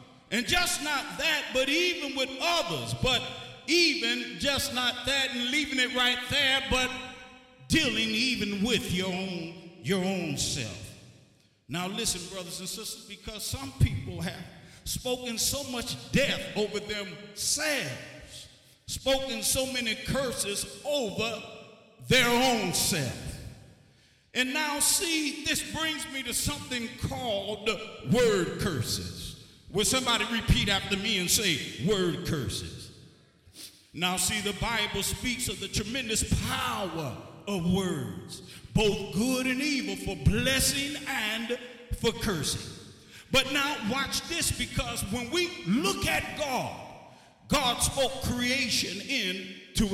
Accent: American